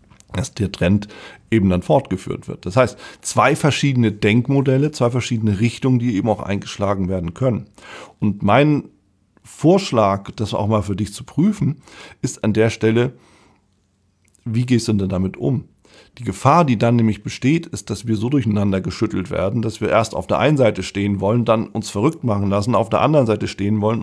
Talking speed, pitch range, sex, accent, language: 185 wpm, 95-120 Hz, male, German, German